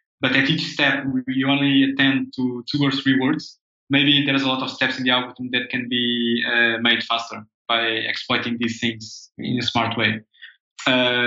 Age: 20-39